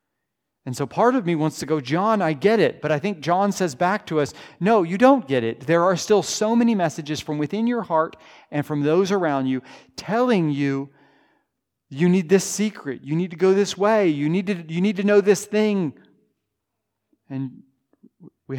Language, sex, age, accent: English, male, 40-59, American